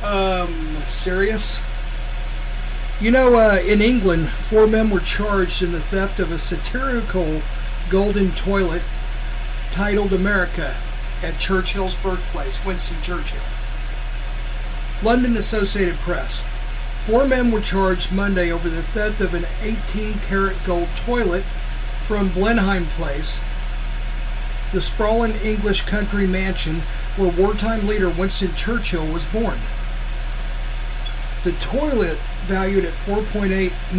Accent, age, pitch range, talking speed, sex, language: American, 50-69, 165-210 Hz, 110 wpm, male, English